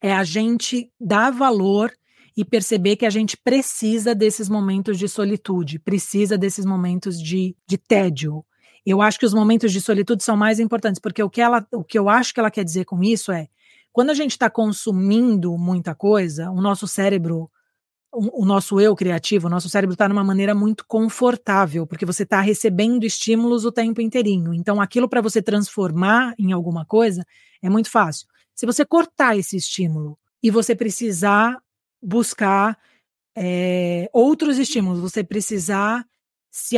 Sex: female